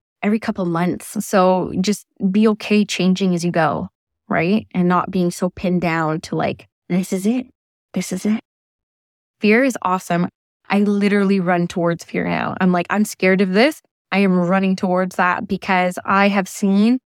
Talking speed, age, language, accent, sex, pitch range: 180 wpm, 10-29, English, American, female, 180-205 Hz